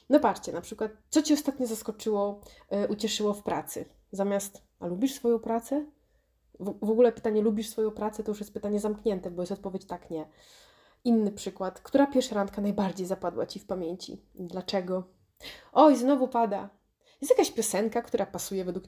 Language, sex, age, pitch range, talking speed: Polish, female, 20-39, 185-225 Hz, 170 wpm